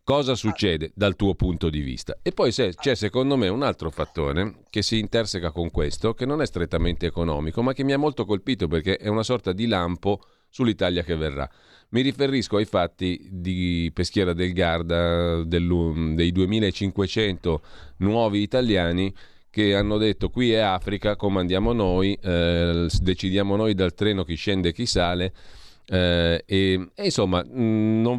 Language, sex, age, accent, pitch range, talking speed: Italian, male, 40-59, native, 85-105 Hz, 160 wpm